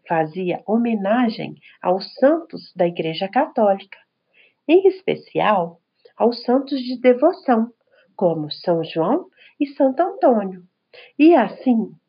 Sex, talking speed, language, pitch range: female, 105 wpm, Portuguese, 170-255 Hz